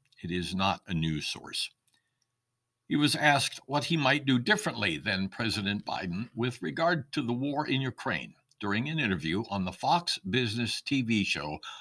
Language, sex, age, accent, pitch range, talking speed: English, male, 60-79, American, 105-135 Hz, 170 wpm